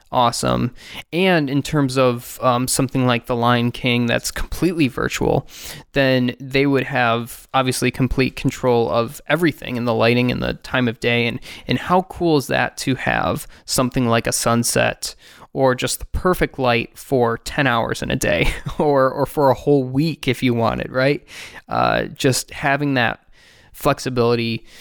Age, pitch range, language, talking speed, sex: 20-39, 120-140 Hz, English, 170 wpm, male